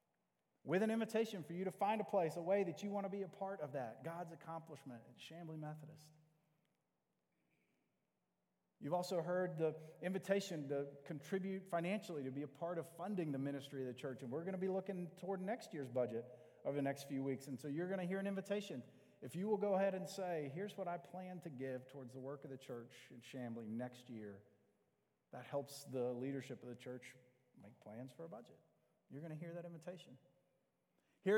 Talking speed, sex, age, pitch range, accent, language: 210 wpm, male, 40-59, 140-180 Hz, American, English